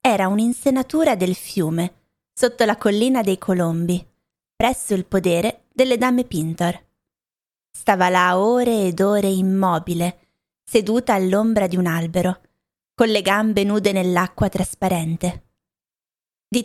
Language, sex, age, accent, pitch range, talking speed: Italian, female, 20-39, native, 185-230 Hz, 120 wpm